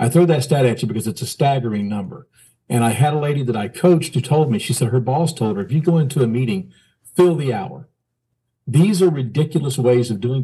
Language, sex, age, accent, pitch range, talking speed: English, male, 50-69, American, 120-160 Hz, 245 wpm